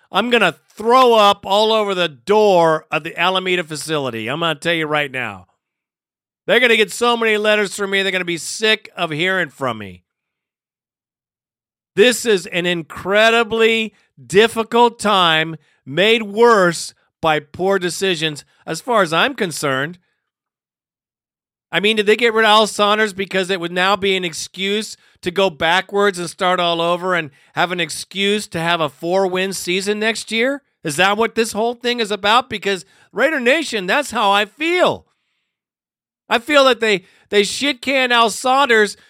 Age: 50-69